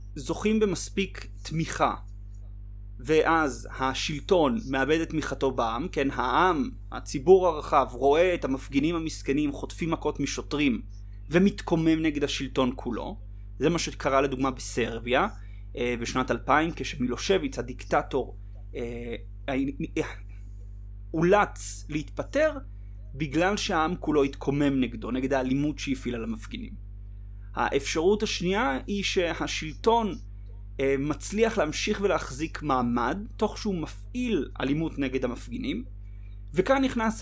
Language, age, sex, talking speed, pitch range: Hebrew, 30-49, male, 100 wpm, 105-175 Hz